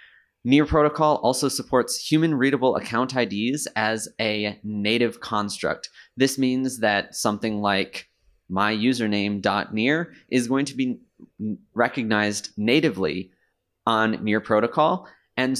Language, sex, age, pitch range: Japanese, male, 20-39, 105-125 Hz